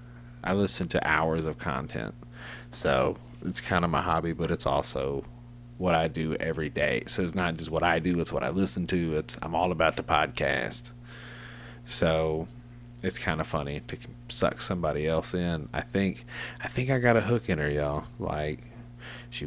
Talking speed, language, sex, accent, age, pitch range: 185 wpm, English, male, American, 30-49, 85-120 Hz